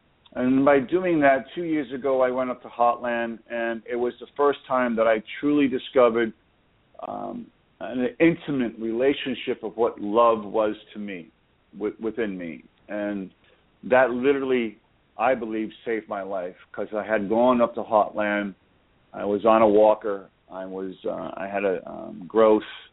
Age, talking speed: 40-59, 165 wpm